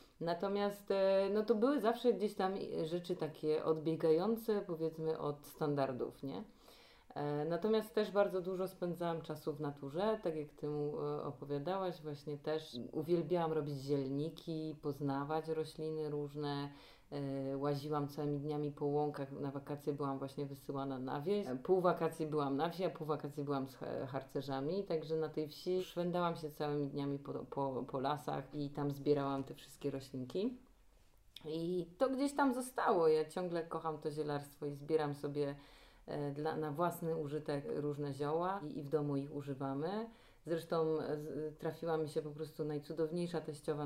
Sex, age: female, 30-49